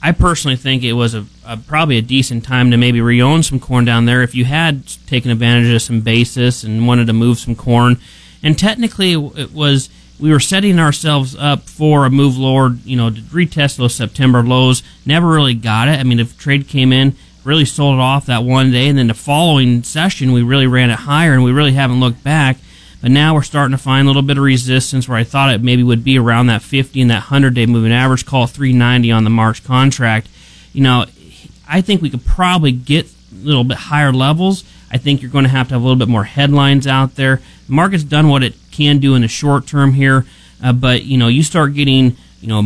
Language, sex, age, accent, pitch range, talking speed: English, male, 30-49, American, 120-145 Hz, 235 wpm